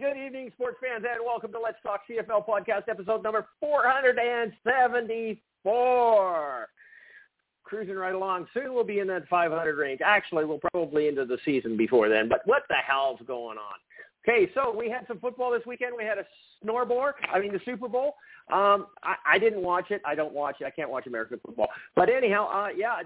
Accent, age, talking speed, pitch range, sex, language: American, 50-69, 200 wpm, 150-245 Hz, male, English